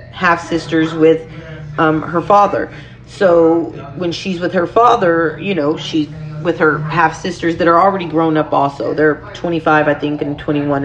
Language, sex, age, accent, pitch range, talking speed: English, female, 40-59, American, 150-200 Hz, 170 wpm